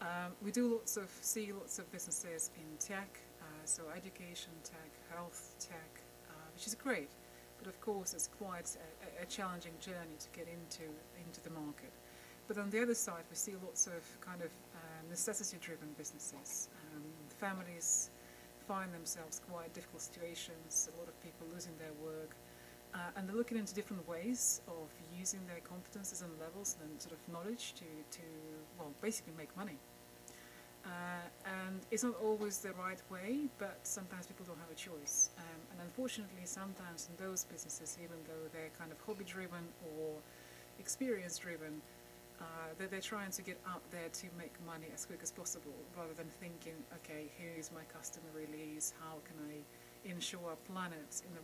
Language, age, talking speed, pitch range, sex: English, 30-49, 175 wpm, 155-190 Hz, female